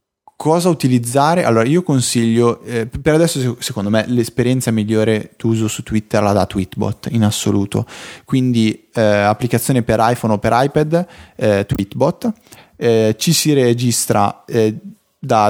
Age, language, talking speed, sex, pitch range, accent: 20-39, Italian, 140 wpm, male, 105-135 Hz, native